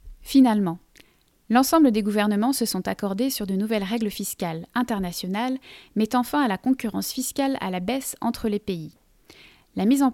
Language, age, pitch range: French, 30-49, 205-250 Hz